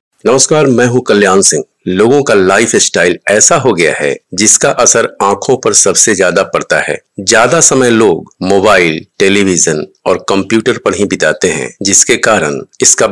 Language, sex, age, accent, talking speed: Hindi, male, 50-69, native, 160 wpm